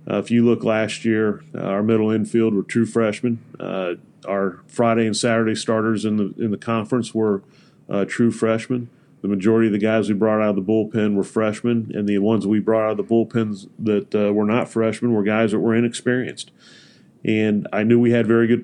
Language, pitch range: English, 105-115 Hz